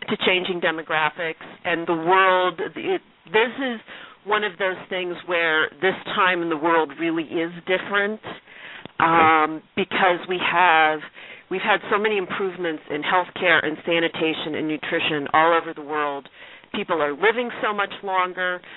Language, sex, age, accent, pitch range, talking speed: English, female, 40-59, American, 160-200 Hz, 145 wpm